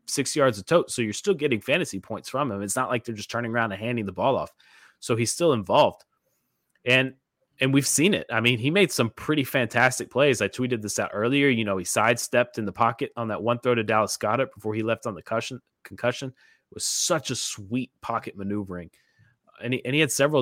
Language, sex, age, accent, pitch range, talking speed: English, male, 30-49, American, 110-130 Hz, 240 wpm